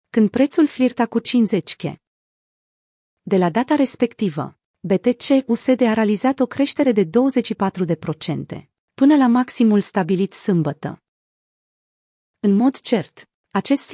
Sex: female